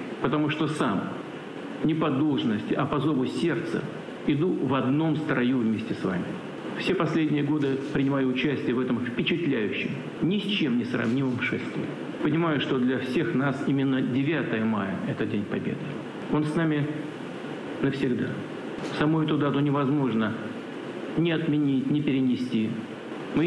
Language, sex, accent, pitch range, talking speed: Russian, male, native, 130-150 Hz, 140 wpm